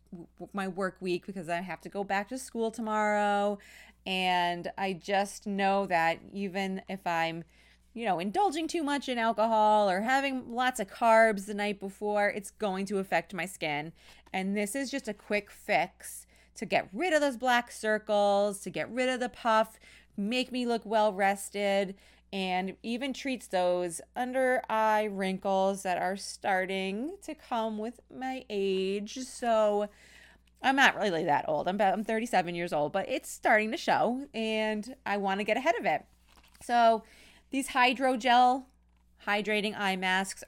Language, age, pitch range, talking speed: English, 30-49, 190-230 Hz, 165 wpm